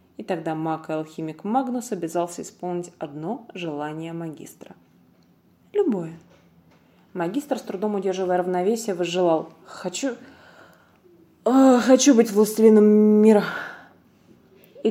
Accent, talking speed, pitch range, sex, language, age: native, 95 wpm, 165-215 Hz, female, Russian, 20-39